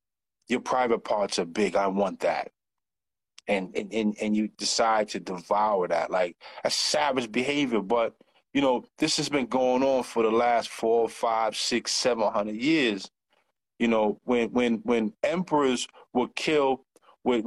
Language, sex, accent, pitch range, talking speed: English, male, American, 105-140 Hz, 160 wpm